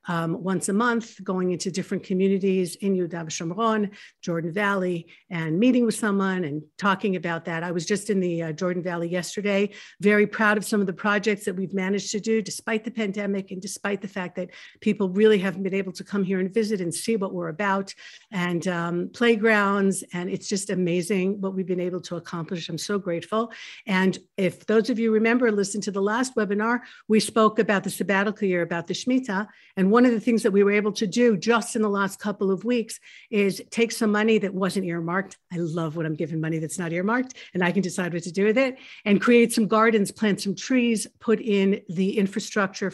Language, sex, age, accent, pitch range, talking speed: English, female, 60-79, American, 180-215 Hz, 215 wpm